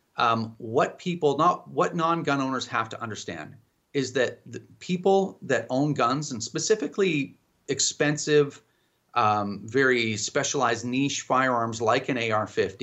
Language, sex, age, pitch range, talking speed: English, male, 30-49, 130-175 Hz, 125 wpm